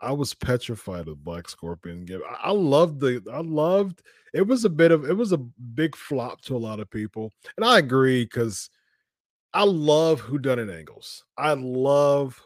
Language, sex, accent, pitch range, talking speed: English, male, American, 110-135 Hz, 185 wpm